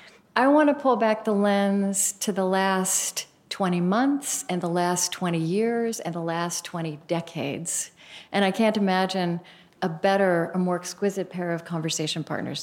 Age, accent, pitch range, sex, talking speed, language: 40-59, American, 170-215 Hz, female, 165 wpm, English